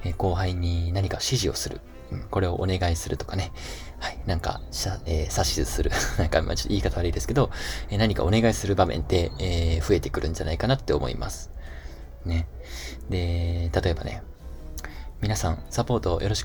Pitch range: 70-100 Hz